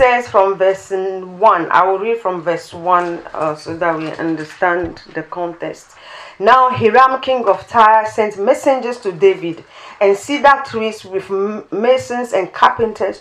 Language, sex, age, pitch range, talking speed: English, female, 40-59, 195-265 Hz, 150 wpm